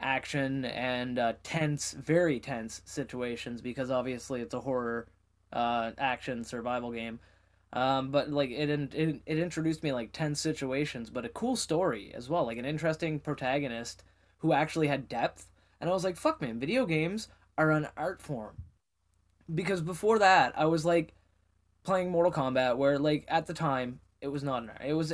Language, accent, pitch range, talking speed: English, American, 120-155 Hz, 180 wpm